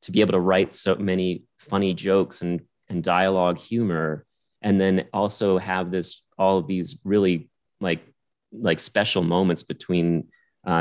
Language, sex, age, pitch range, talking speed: English, male, 30-49, 85-95 Hz, 155 wpm